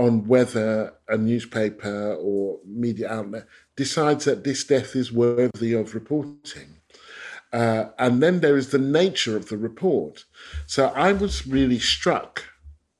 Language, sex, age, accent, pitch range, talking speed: English, male, 50-69, British, 100-130 Hz, 140 wpm